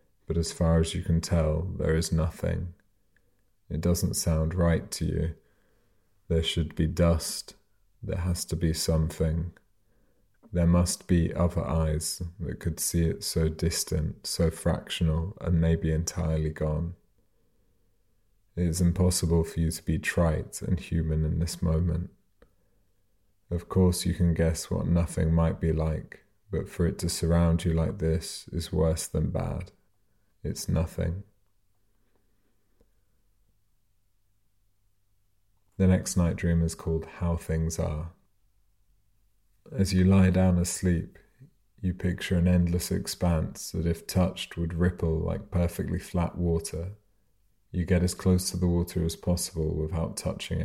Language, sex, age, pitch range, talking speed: English, male, 30-49, 80-95 Hz, 140 wpm